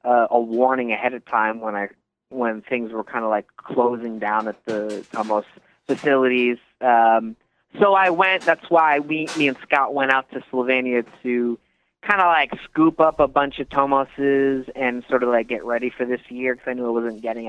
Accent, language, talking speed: American, English, 200 wpm